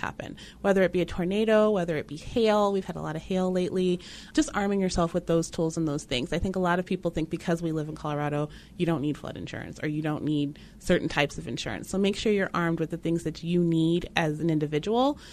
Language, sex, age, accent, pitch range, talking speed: English, female, 30-49, American, 155-190 Hz, 255 wpm